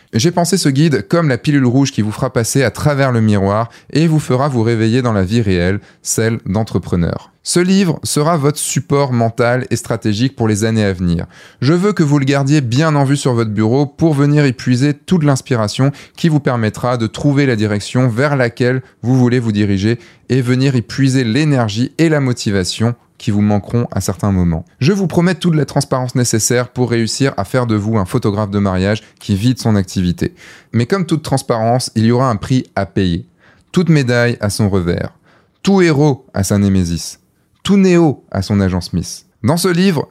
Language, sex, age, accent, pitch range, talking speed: French, male, 20-39, French, 105-145 Hz, 205 wpm